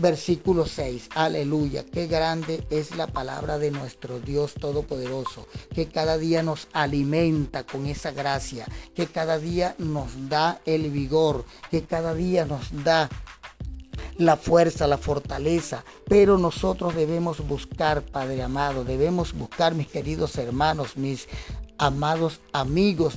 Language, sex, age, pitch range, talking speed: Spanish, male, 40-59, 145-170 Hz, 130 wpm